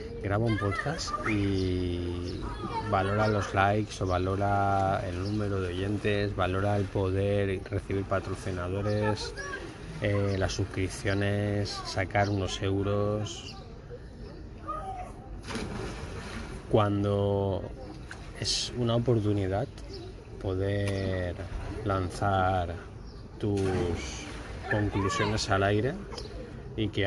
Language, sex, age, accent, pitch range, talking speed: Spanish, male, 20-39, Spanish, 95-105 Hz, 80 wpm